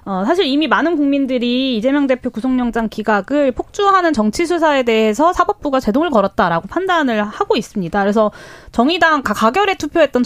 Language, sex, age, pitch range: Korean, female, 20-39, 215-305 Hz